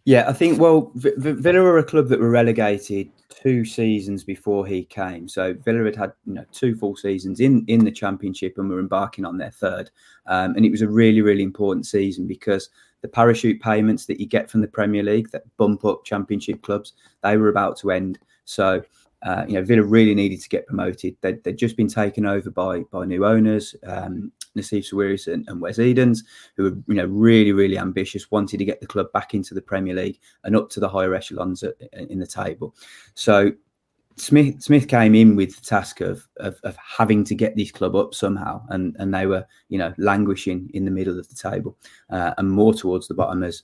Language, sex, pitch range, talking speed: English, male, 95-110 Hz, 215 wpm